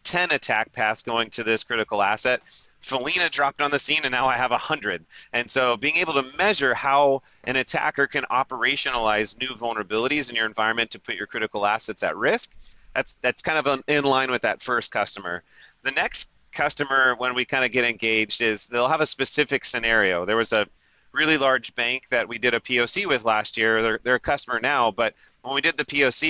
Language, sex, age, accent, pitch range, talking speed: English, male, 30-49, American, 120-145 Hz, 210 wpm